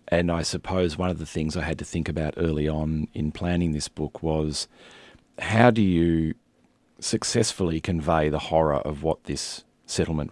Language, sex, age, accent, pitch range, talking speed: English, male, 40-59, Australian, 75-90 Hz, 175 wpm